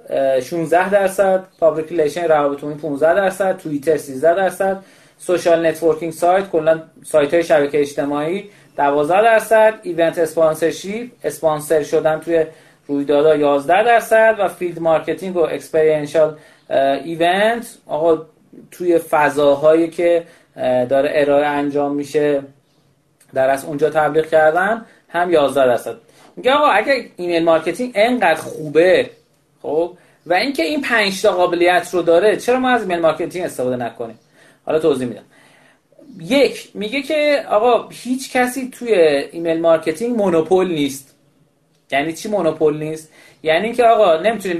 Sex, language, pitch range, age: male, Persian, 155-215 Hz, 30-49